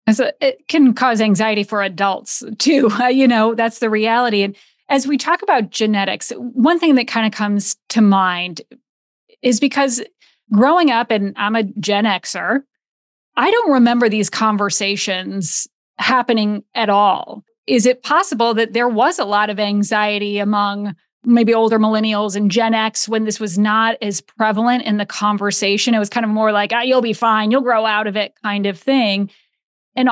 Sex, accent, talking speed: female, American, 175 wpm